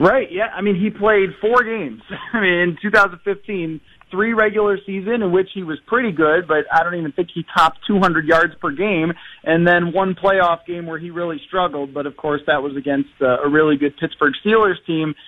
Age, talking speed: 30-49, 200 wpm